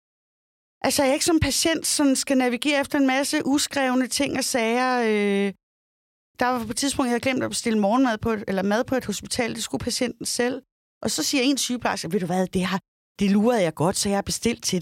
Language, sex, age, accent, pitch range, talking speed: Danish, female, 30-49, native, 200-255 Hz, 235 wpm